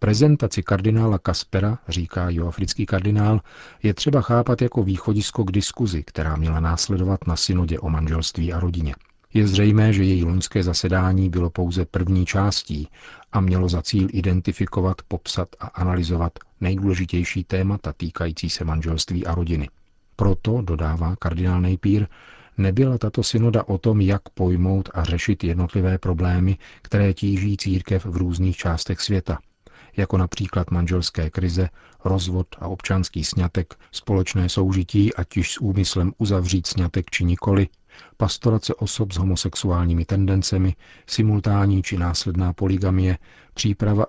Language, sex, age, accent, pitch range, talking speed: Czech, male, 40-59, native, 90-100 Hz, 130 wpm